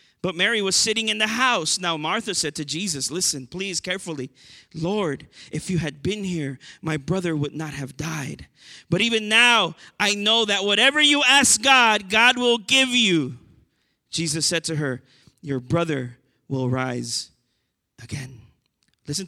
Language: English